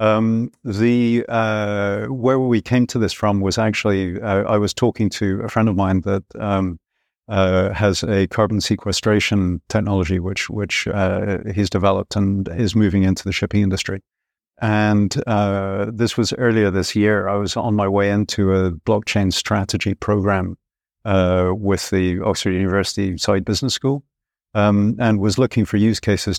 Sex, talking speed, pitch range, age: male, 165 wpm, 95-110 Hz, 50-69